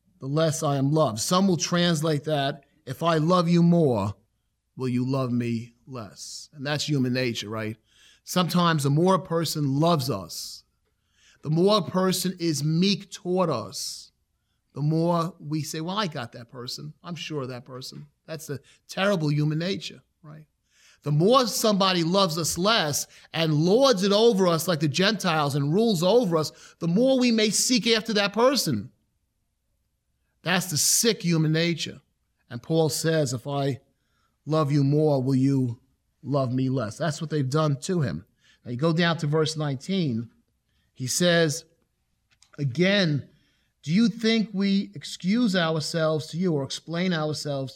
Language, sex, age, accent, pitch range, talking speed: English, male, 30-49, American, 140-185 Hz, 165 wpm